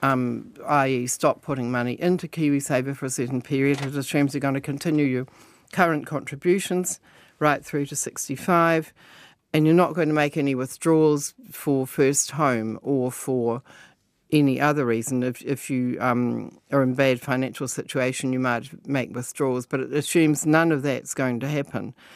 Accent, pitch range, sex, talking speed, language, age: Australian, 135-165 Hz, female, 170 wpm, English, 50-69